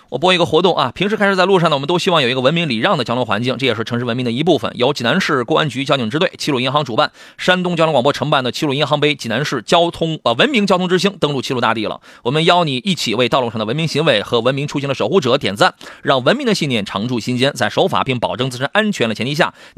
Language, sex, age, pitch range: Chinese, male, 30-49, 125-175 Hz